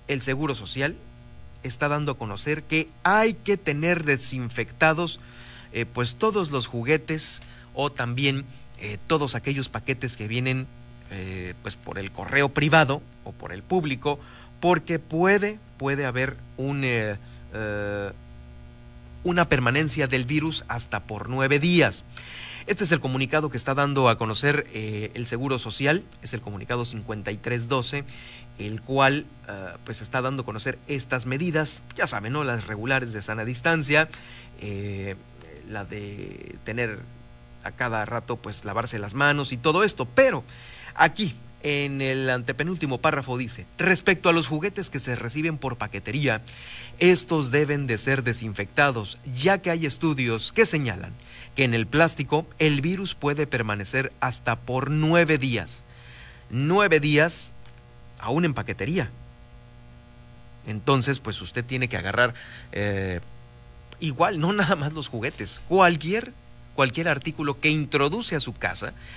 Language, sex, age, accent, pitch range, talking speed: Spanish, male, 40-59, Mexican, 110-150 Hz, 140 wpm